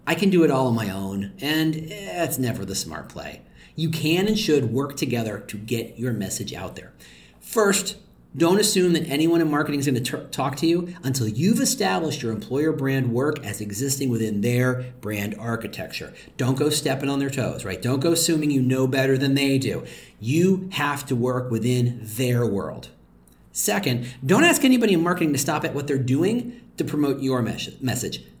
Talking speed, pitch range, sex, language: 190 wpm, 115-155 Hz, male, English